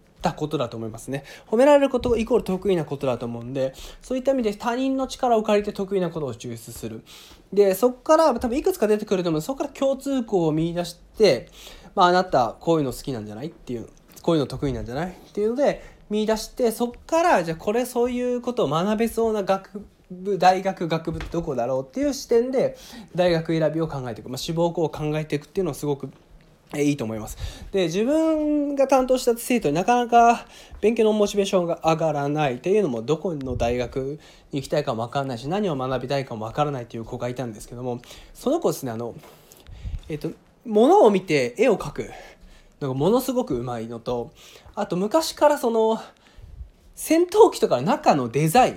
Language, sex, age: Japanese, male, 20-39